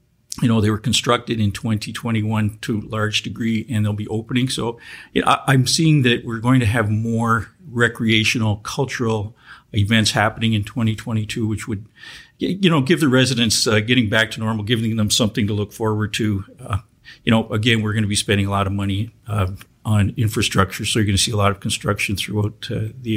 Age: 50-69